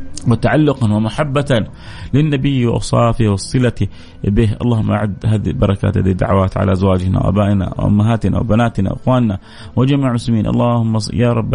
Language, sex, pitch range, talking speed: Arabic, male, 100-125 Hz, 115 wpm